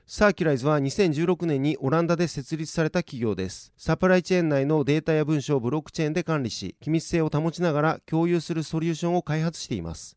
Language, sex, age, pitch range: Japanese, male, 30-49, 135-165 Hz